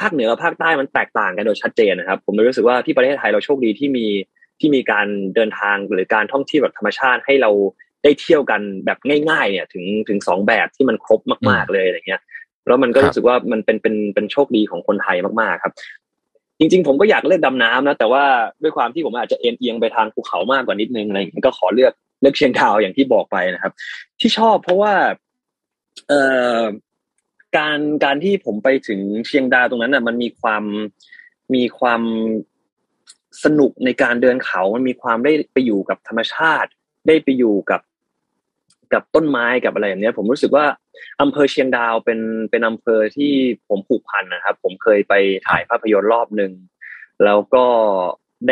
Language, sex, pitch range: Thai, male, 105-145 Hz